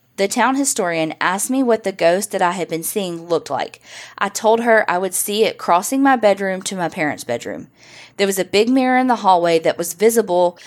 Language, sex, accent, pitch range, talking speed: English, female, American, 170-225 Hz, 225 wpm